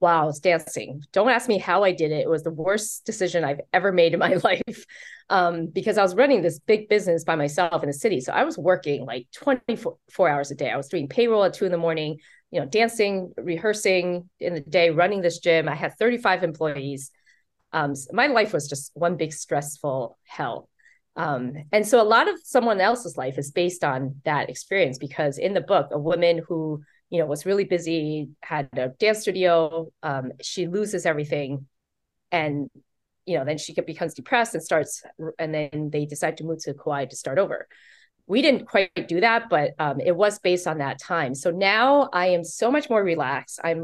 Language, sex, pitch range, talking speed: English, female, 150-195 Hz, 205 wpm